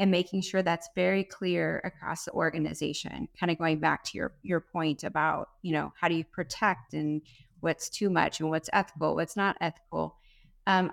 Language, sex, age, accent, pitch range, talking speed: English, female, 30-49, American, 165-200 Hz, 190 wpm